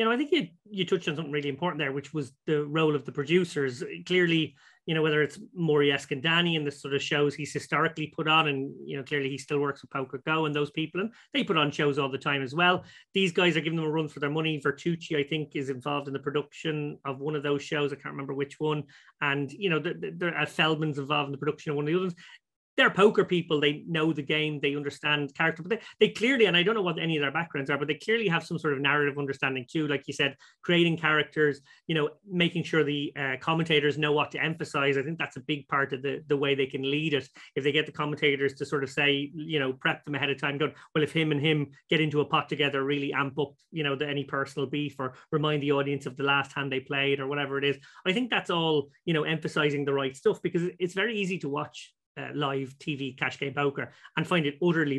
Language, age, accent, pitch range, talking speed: English, 30-49, Irish, 140-160 Hz, 265 wpm